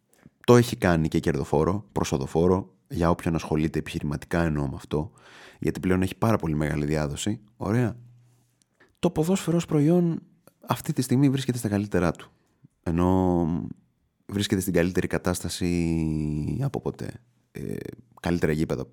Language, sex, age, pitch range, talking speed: Greek, male, 30-49, 80-120 Hz, 130 wpm